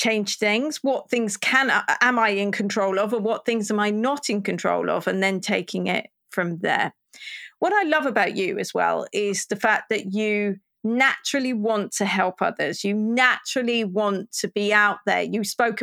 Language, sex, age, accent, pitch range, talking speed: English, female, 40-59, British, 205-240 Hz, 195 wpm